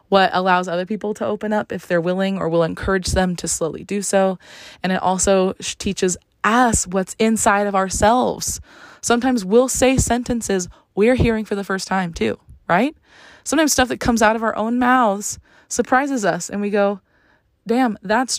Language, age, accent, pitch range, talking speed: English, 20-39, American, 170-210 Hz, 180 wpm